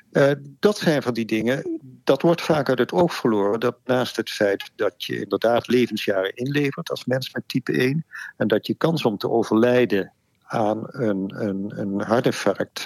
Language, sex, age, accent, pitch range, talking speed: Dutch, male, 50-69, Dutch, 105-135 Hz, 180 wpm